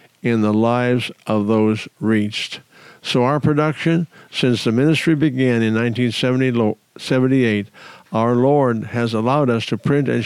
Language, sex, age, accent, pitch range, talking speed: English, male, 50-69, American, 115-135 Hz, 135 wpm